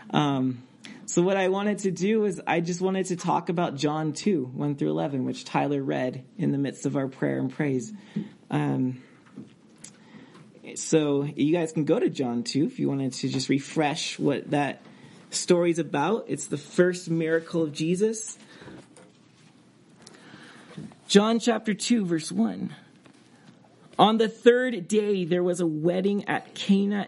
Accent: American